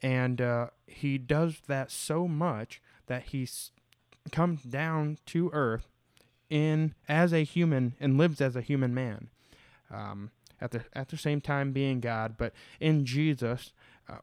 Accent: American